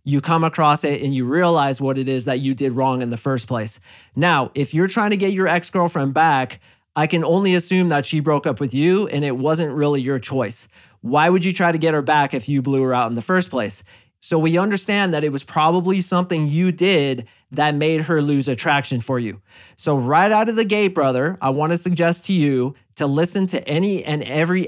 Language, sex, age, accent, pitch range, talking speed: English, male, 30-49, American, 130-170 Hz, 230 wpm